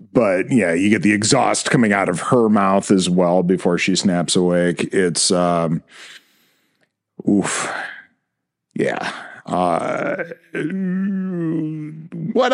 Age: 40-59